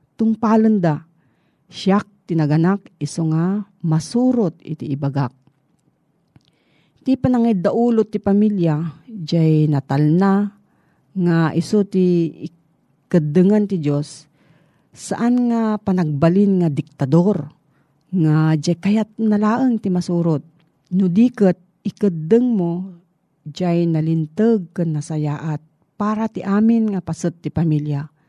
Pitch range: 155-200 Hz